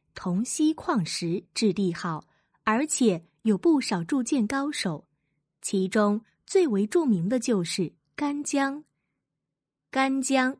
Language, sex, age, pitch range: Chinese, female, 20-39, 180-270 Hz